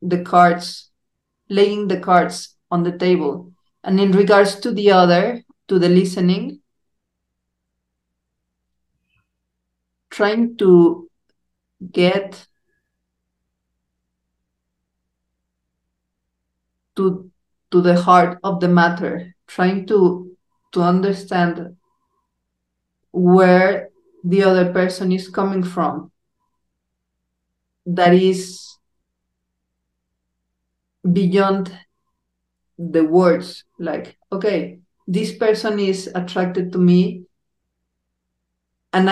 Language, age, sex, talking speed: English, 50-69, female, 80 wpm